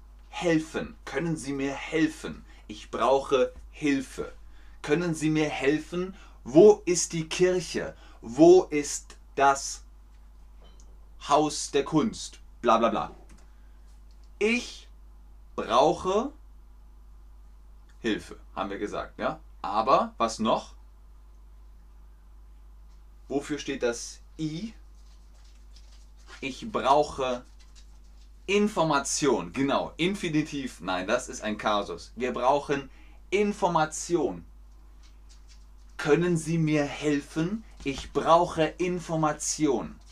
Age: 30-49